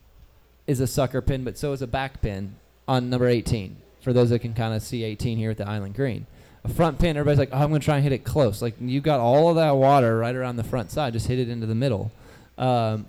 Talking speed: 260 wpm